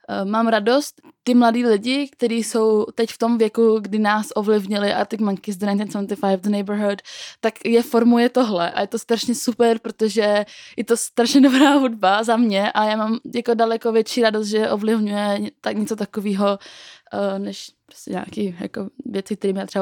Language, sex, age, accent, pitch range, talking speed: Czech, female, 20-39, native, 200-230 Hz, 175 wpm